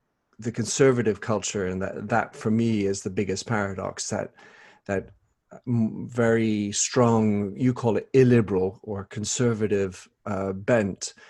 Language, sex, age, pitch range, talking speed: English, male, 40-59, 105-120 Hz, 125 wpm